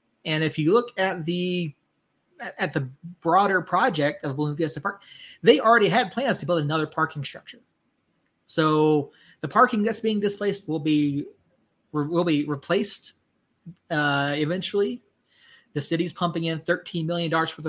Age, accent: 30-49, American